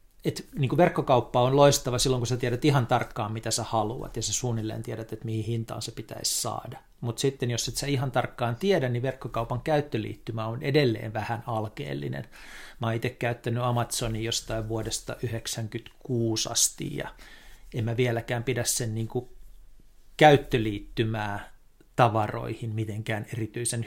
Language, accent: Finnish, native